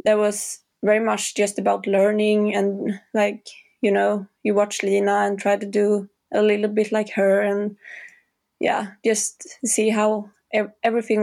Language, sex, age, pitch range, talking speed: English, female, 20-39, 200-220 Hz, 155 wpm